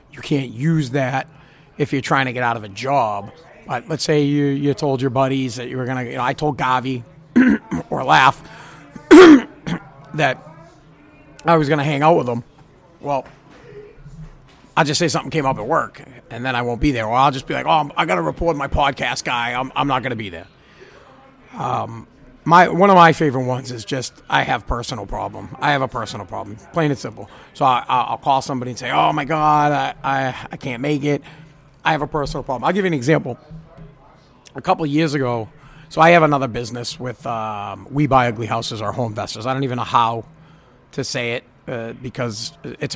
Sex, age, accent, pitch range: male, 40-59, American, 125-155 Hz